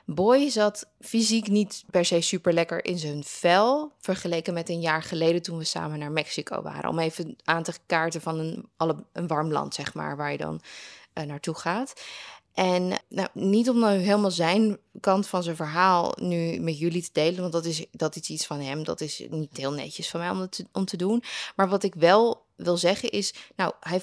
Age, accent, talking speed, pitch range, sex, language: 20-39, Dutch, 200 wpm, 170-210 Hz, female, Dutch